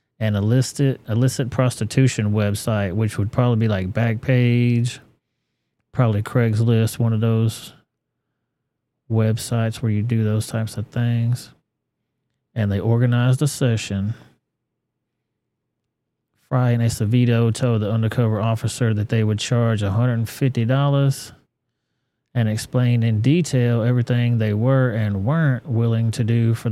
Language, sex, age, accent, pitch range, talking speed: English, male, 30-49, American, 110-125 Hz, 125 wpm